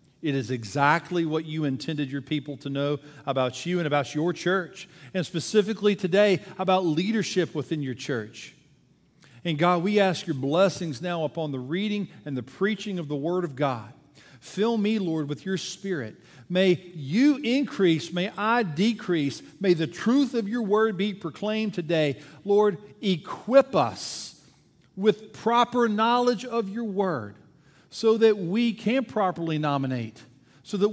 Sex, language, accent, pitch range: male, English, American, 145-200 Hz